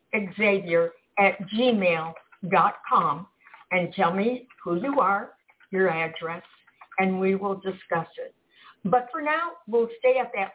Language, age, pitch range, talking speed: English, 60-79, 180-250 Hz, 130 wpm